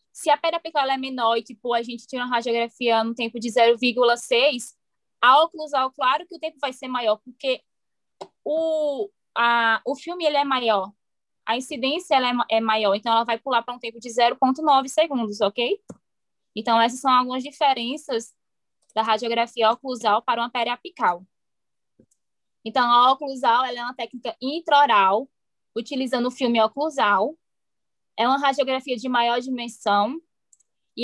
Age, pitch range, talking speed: 10-29, 225-270 Hz, 155 wpm